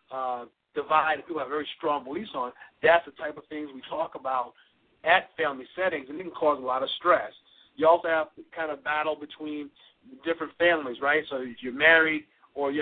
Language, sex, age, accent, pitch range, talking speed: English, male, 50-69, American, 145-165 Hz, 210 wpm